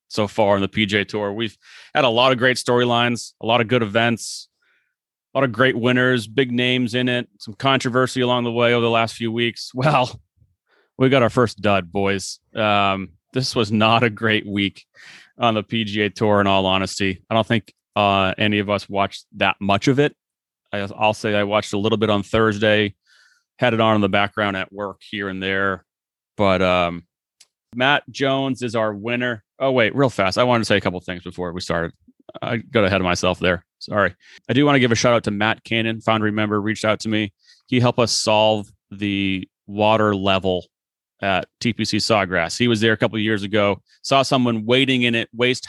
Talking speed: 210 wpm